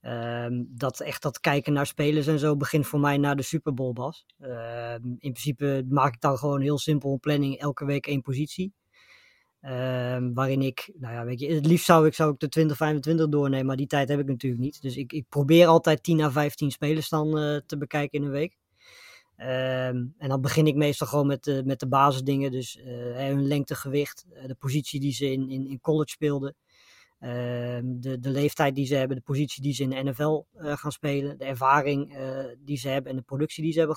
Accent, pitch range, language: Dutch, 130-150 Hz, Dutch